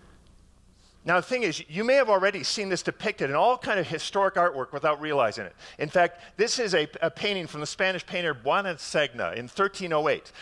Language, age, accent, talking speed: English, 40-59, American, 200 wpm